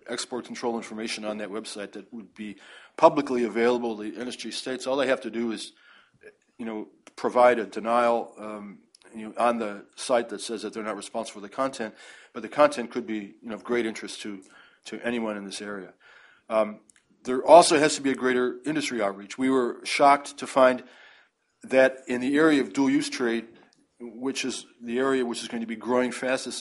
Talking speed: 205 wpm